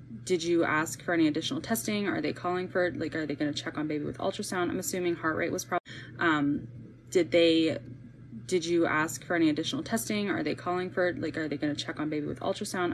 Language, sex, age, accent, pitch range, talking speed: English, female, 10-29, American, 150-180 Hz, 245 wpm